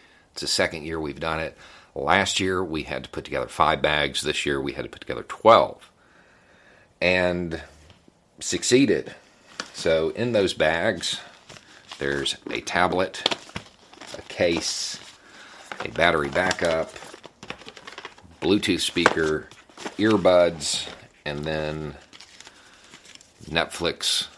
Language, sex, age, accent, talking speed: English, male, 40-59, American, 110 wpm